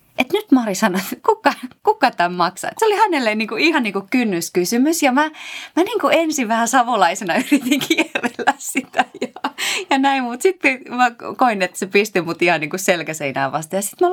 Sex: female